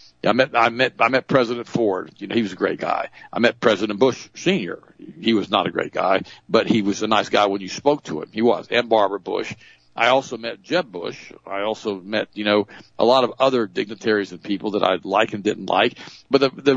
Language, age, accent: English, 50-69, American